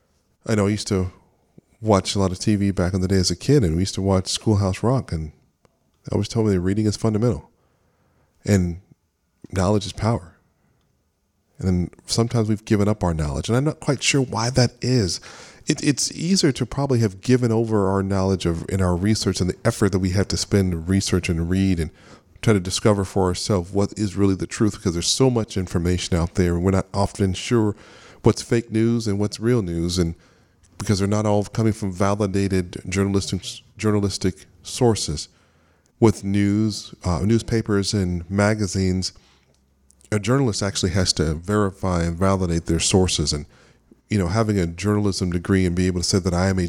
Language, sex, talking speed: English, male, 195 wpm